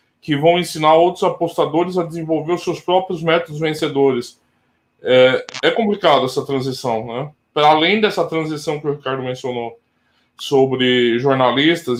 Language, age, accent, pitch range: Portuguese, 20-39, Brazilian, 125-155 Hz